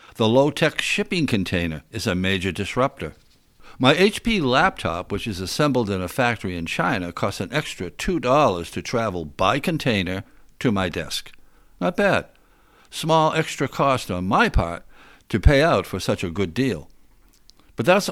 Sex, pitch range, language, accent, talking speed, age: male, 95-140 Hz, English, American, 160 wpm, 60-79